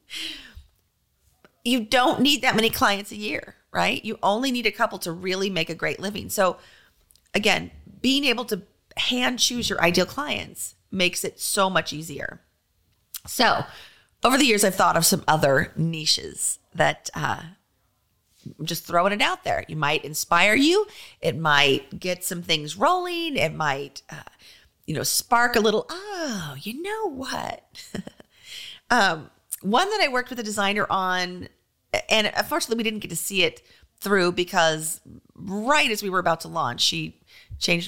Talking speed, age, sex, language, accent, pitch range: 165 wpm, 30-49, female, English, American, 165-240 Hz